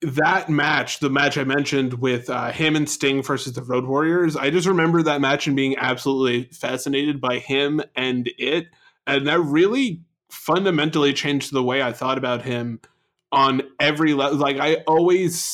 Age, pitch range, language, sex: 20-39, 130-155 Hz, English, male